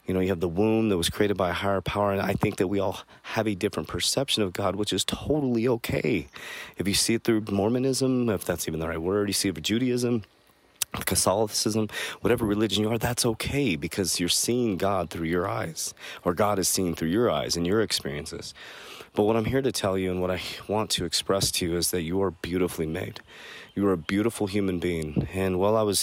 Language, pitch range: English, 90-105 Hz